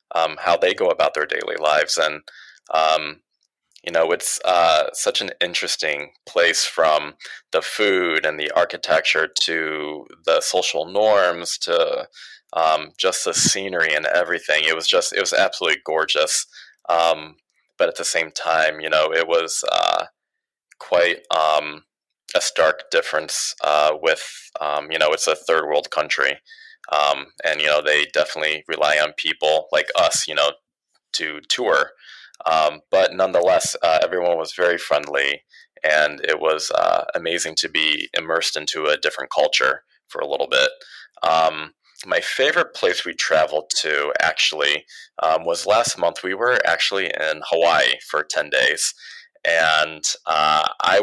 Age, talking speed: 20-39, 150 wpm